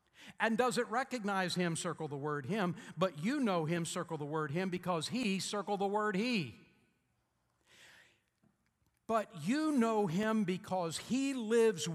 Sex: male